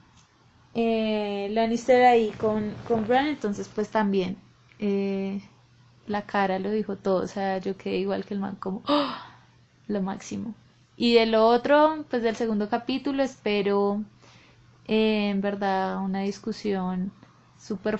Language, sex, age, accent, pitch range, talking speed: Spanish, female, 20-39, Colombian, 195-230 Hz, 140 wpm